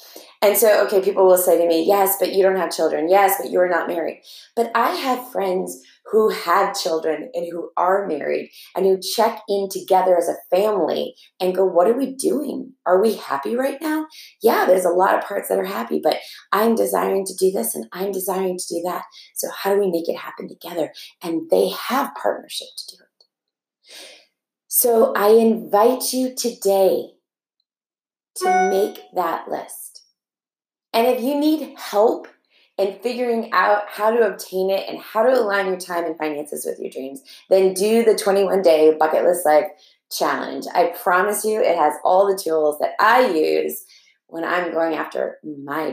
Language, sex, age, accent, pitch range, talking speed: English, female, 30-49, American, 175-225 Hz, 185 wpm